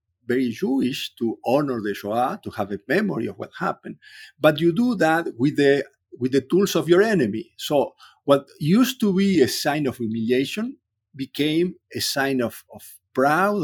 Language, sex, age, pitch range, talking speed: English, male, 50-69, 120-155 Hz, 175 wpm